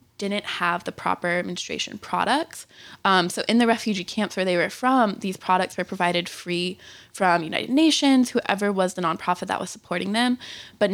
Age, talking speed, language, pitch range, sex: 20-39, 180 wpm, English, 175-205 Hz, female